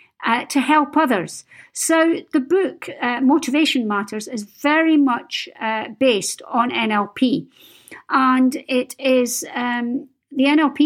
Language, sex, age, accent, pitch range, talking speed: English, female, 50-69, British, 235-310 Hz, 125 wpm